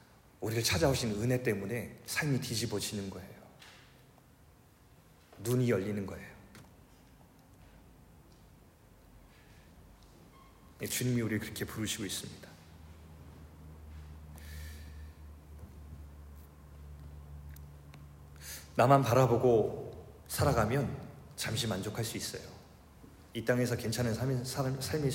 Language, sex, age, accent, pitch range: Korean, male, 40-59, native, 80-125 Hz